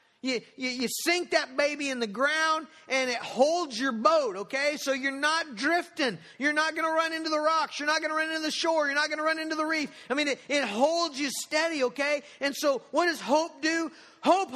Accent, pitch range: American, 215-310 Hz